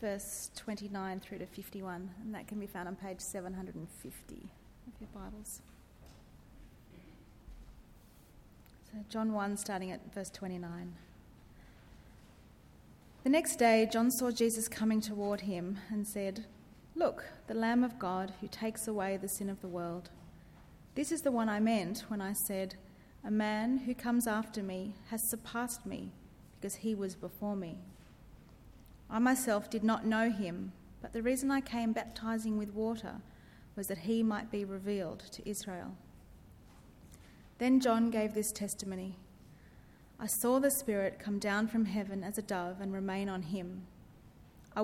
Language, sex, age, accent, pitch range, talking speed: English, female, 30-49, Australian, 190-225 Hz, 150 wpm